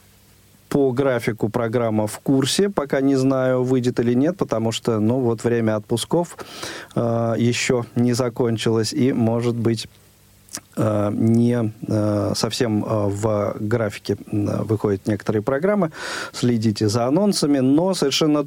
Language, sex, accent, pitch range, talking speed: Russian, male, native, 110-135 Hz, 125 wpm